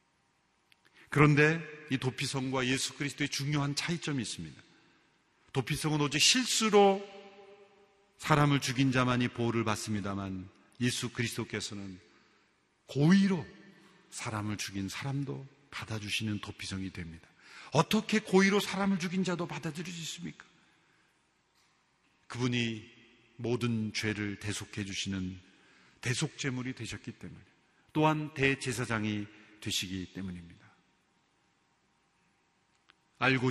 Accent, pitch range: native, 110-180 Hz